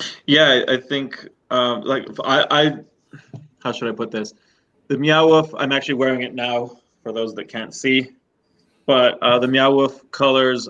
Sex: male